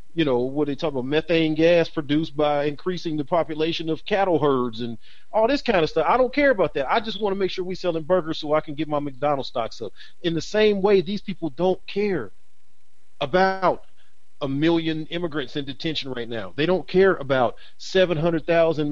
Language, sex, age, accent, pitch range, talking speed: English, male, 40-59, American, 140-180 Hz, 205 wpm